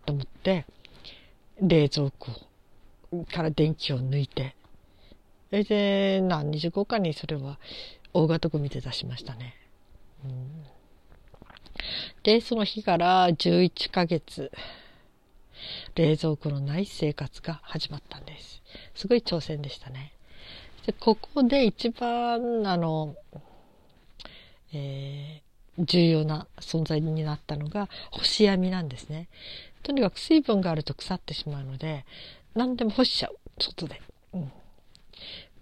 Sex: female